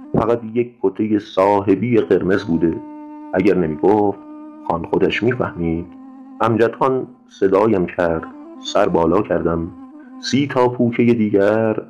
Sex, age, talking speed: male, 30-49, 110 wpm